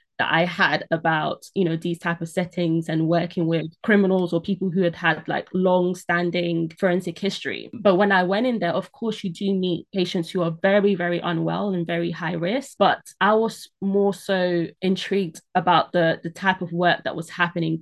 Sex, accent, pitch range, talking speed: female, British, 170-200 Hz, 200 wpm